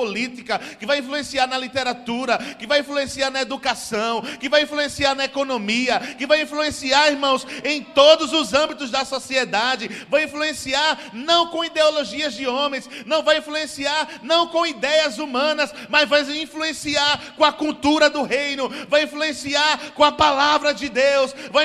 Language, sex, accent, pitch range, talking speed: Portuguese, male, Brazilian, 275-295 Hz, 150 wpm